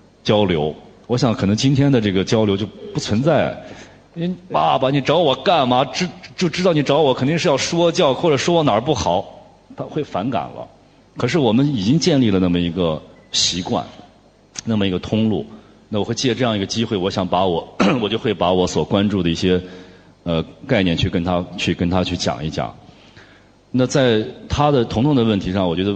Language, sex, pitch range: Chinese, male, 90-125 Hz